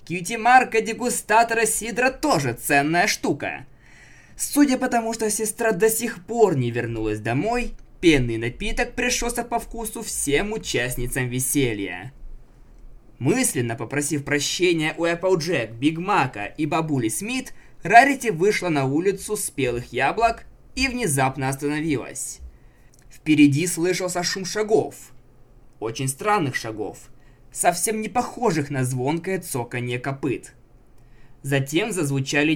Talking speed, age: 110 wpm, 20-39